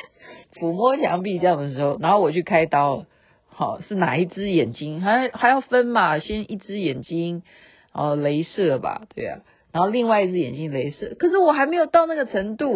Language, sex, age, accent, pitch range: Chinese, female, 50-69, native, 160-230 Hz